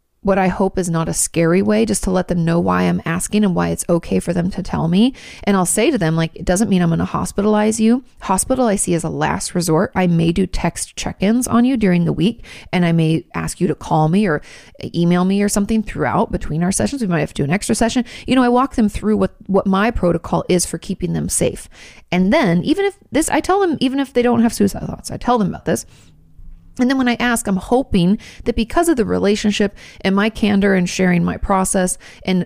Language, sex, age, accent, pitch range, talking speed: English, female, 30-49, American, 170-220 Hz, 250 wpm